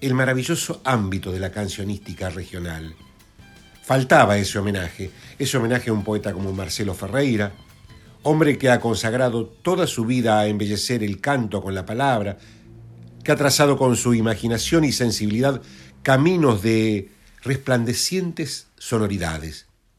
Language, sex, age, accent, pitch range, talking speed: Spanish, male, 50-69, Argentinian, 100-130 Hz, 130 wpm